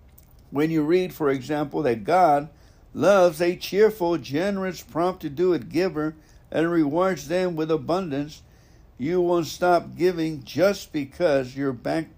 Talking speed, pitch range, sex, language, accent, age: 130 wpm, 130-175 Hz, male, English, American, 60-79